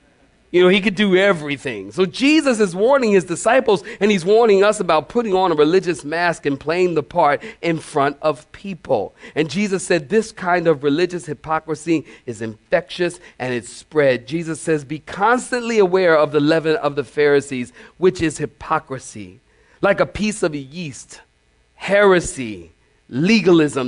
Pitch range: 135-180 Hz